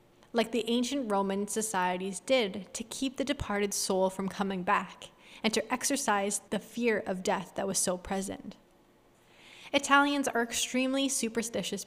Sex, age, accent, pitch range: female, 10-29, American, 200-255 Hz